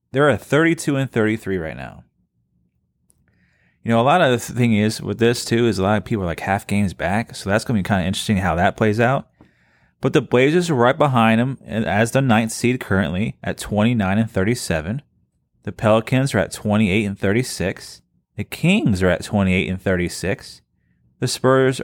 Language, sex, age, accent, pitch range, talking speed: English, male, 30-49, American, 100-135 Hz, 200 wpm